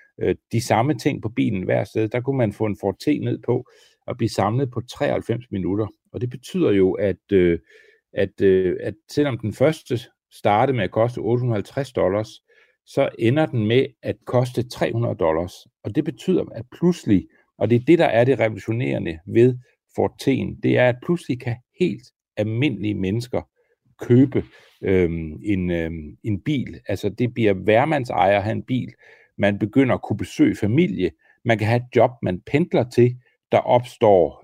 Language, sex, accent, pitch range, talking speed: Danish, male, native, 105-135 Hz, 175 wpm